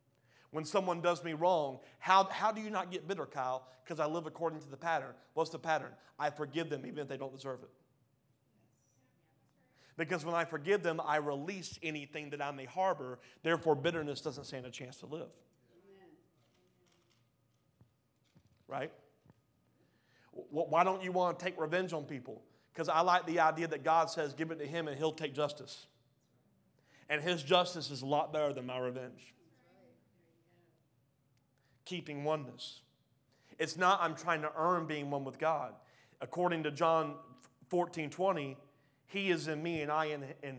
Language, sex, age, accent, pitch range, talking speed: English, male, 30-49, American, 135-170 Hz, 165 wpm